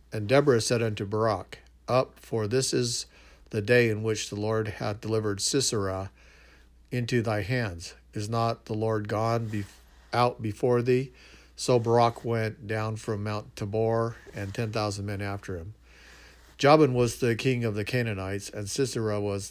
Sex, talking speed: male, 160 wpm